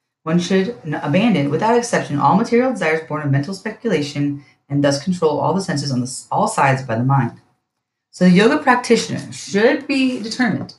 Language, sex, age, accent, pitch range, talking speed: English, female, 30-49, American, 140-205 Hz, 180 wpm